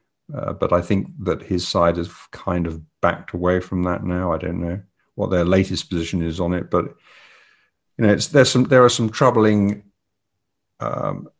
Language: English